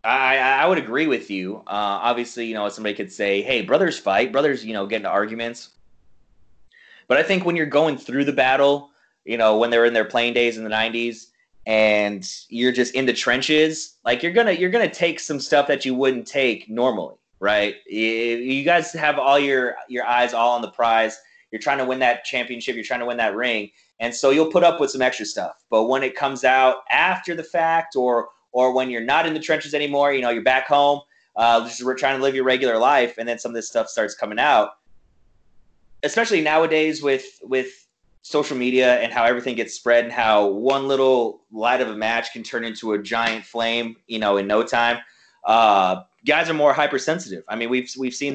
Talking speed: 215 wpm